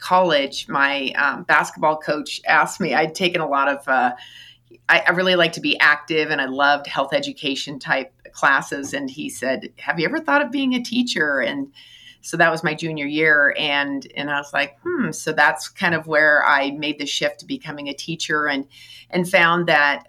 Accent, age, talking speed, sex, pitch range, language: American, 30-49, 205 wpm, female, 135-165 Hz, English